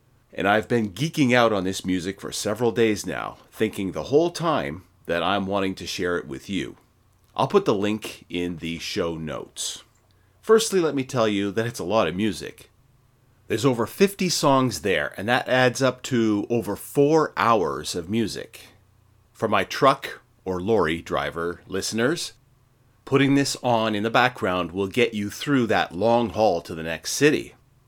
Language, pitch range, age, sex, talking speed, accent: English, 95-125 Hz, 30-49, male, 175 wpm, American